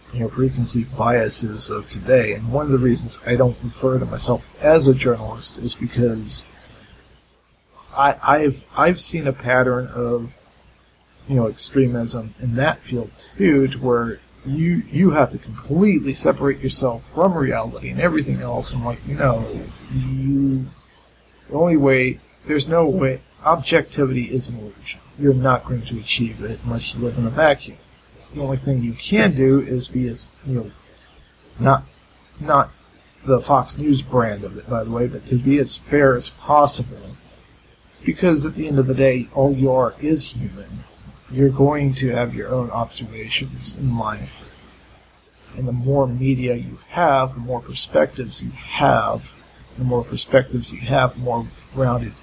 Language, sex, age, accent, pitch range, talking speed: English, male, 50-69, American, 120-135 Hz, 165 wpm